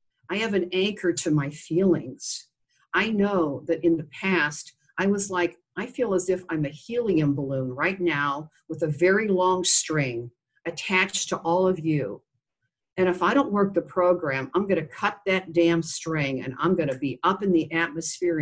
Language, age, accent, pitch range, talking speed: English, 50-69, American, 145-185 Hz, 185 wpm